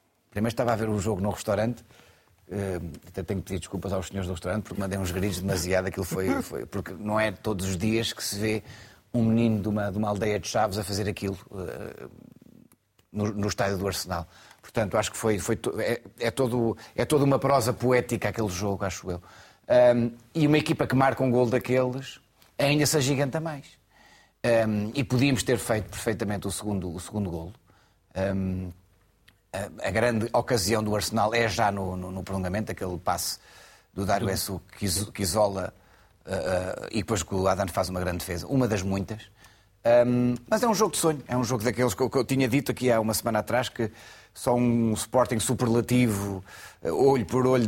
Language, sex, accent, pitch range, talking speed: Portuguese, male, Portuguese, 95-125 Hz, 190 wpm